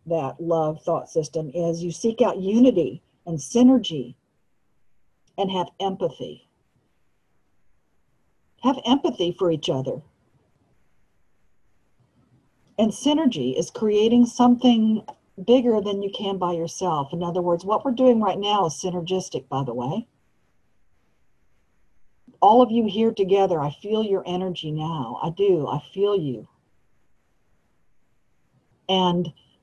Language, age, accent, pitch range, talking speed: English, 50-69, American, 175-235 Hz, 120 wpm